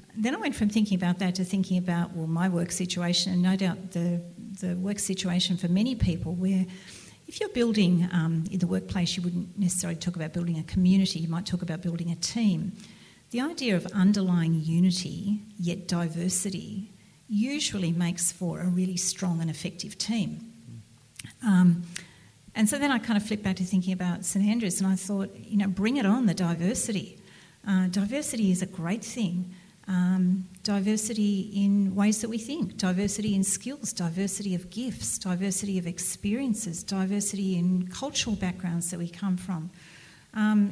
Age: 40-59